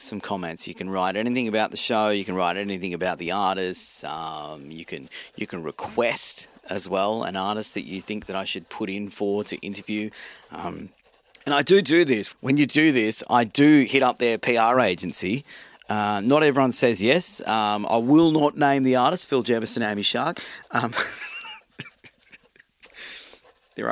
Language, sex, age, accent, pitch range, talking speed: English, male, 40-59, Australian, 105-145 Hz, 180 wpm